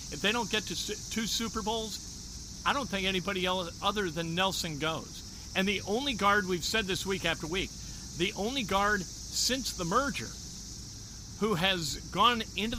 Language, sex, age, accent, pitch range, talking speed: English, male, 50-69, American, 140-190 Hz, 170 wpm